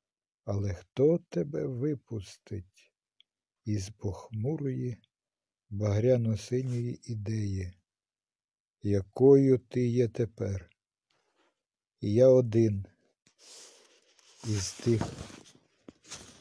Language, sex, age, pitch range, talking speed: Ukrainian, male, 50-69, 100-125 Hz, 65 wpm